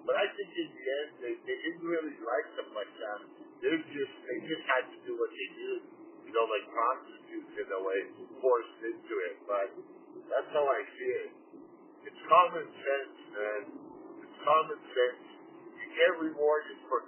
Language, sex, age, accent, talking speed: English, male, 50-69, American, 185 wpm